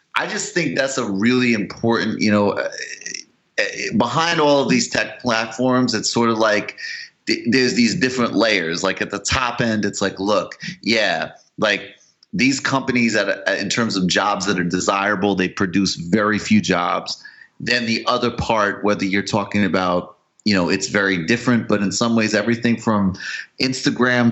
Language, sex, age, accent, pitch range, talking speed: English, male, 30-49, American, 95-120 Hz, 175 wpm